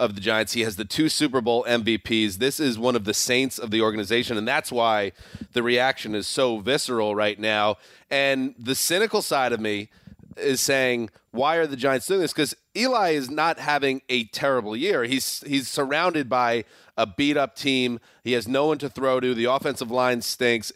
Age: 30-49